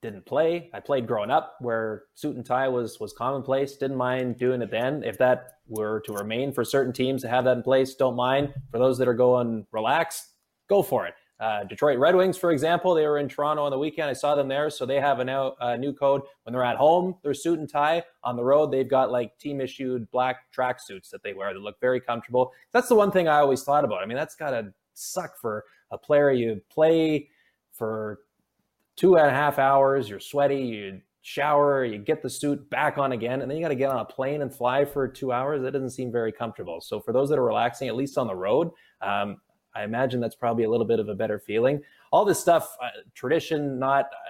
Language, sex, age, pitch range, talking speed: English, male, 20-39, 120-140 Hz, 240 wpm